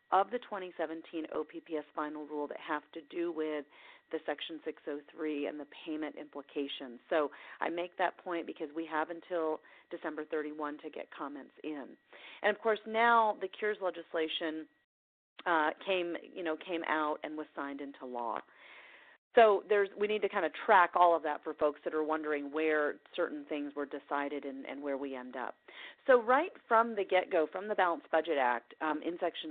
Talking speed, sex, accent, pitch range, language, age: 185 wpm, female, American, 145-175 Hz, English, 40-59